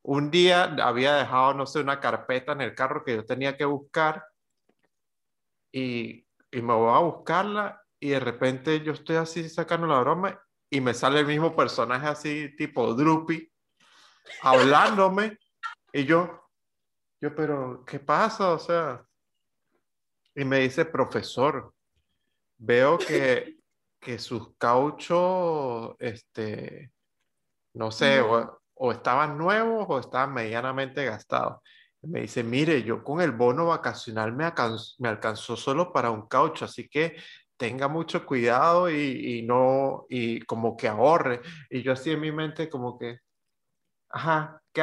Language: Spanish